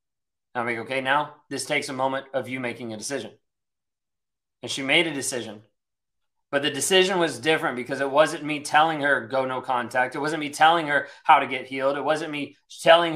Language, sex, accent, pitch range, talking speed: English, male, American, 135-155 Hz, 205 wpm